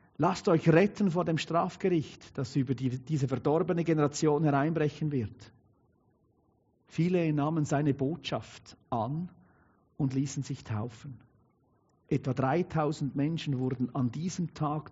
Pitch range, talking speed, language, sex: 125-160 Hz, 115 wpm, German, male